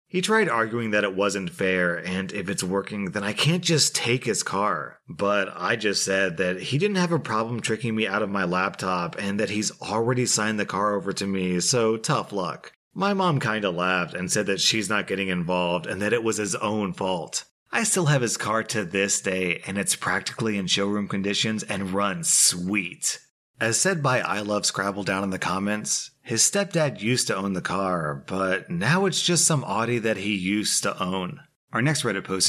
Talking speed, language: 210 wpm, English